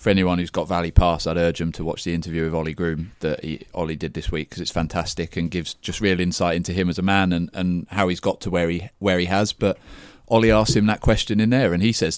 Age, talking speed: 30-49, 280 wpm